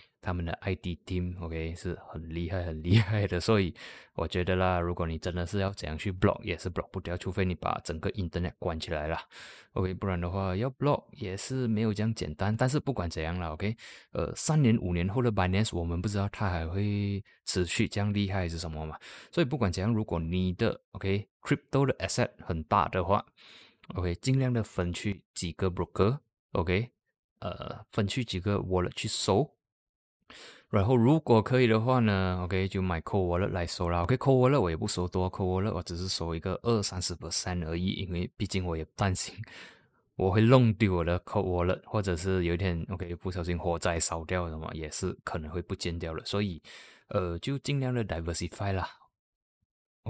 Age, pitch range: 20-39, 90-110 Hz